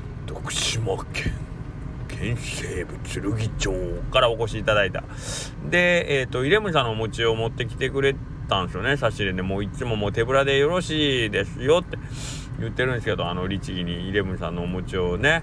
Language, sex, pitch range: Japanese, male, 115-160 Hz